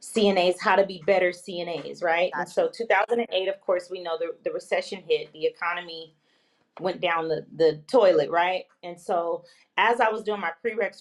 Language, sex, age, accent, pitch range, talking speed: English, female, 30-49, American, 165-210 Hz, 185 wpm